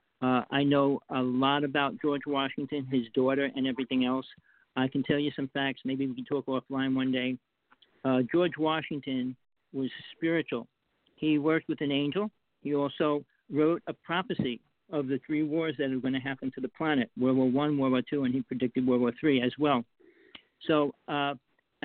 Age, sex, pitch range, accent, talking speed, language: 50-69, male, 135-170 Hz, American, 190 wpm, English